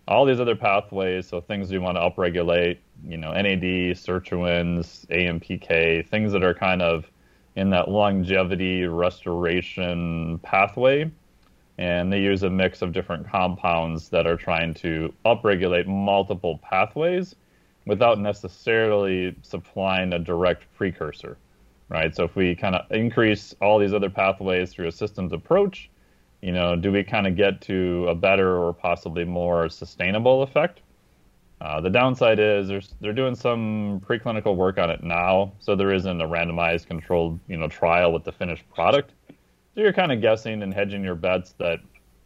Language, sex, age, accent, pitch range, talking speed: English, male, 30-49, American, 85-105 Hz, 160 wpm